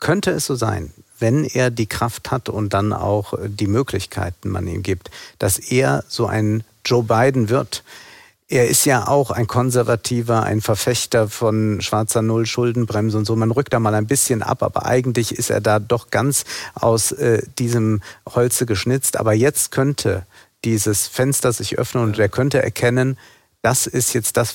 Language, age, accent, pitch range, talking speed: German, 50-69, German, 105-125 Hz, 175 wpm